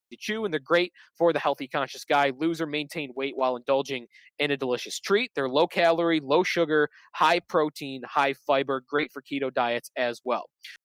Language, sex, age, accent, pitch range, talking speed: English, male, 20-39, American, 140-175 Hz, 195 wpm